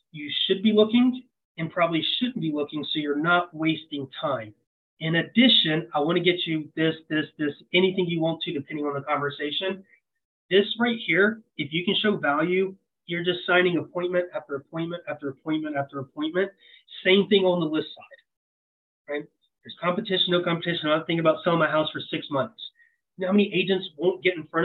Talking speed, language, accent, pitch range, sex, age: 190 wpm, English, American, 155-195 Hz, male, 30-49